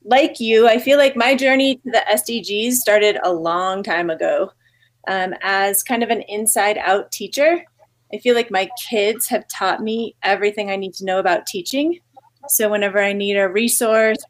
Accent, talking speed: American, 185 wpm